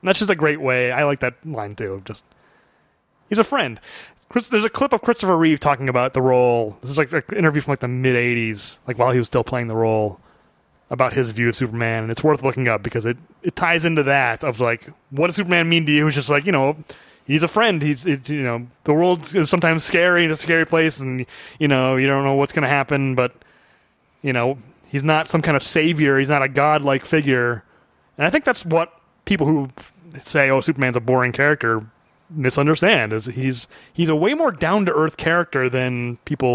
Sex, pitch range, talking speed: male, 130-175 Hz, 225 wpm